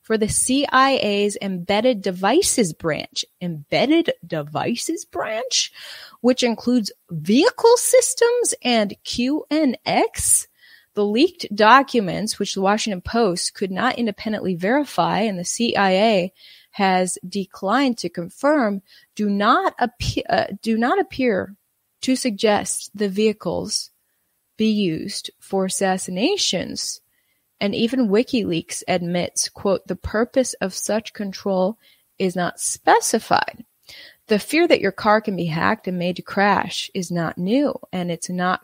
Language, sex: English, female